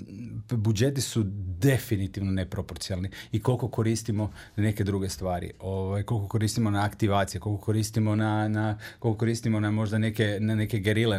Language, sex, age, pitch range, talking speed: English, male, 30-49, 110-130 Hz, 150 wpm